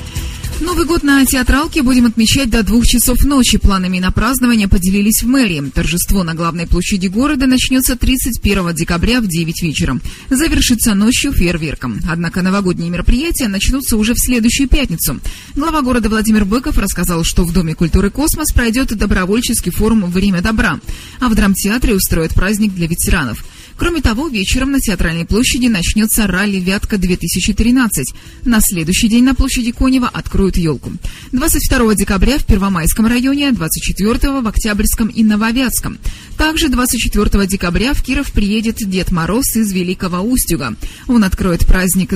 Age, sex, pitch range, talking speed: 20-39, female, 185-250 Hz, 145 wpm